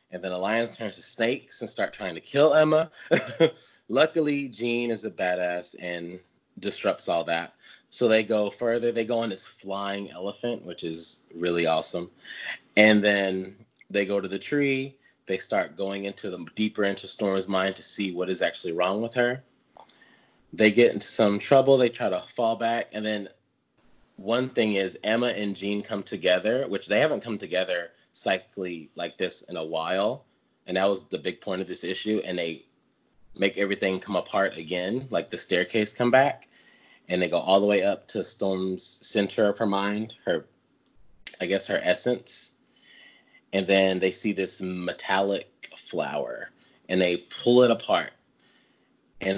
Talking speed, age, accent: 175 wpm, 20-39, American